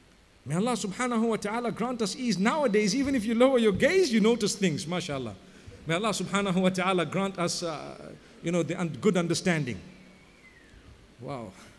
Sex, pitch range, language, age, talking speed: male, 190-260 Hz, English, 50-69, 170 wpm